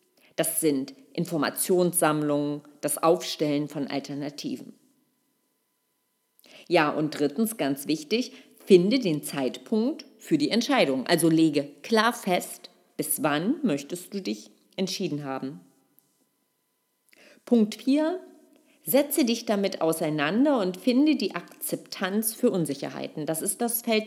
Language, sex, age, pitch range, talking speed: German, female, 40-59, 155-240 Hz, 110 wpm